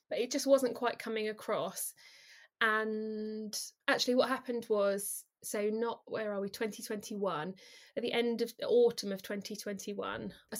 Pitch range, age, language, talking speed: 205-255 Hz, 20-39, English, 140 wpm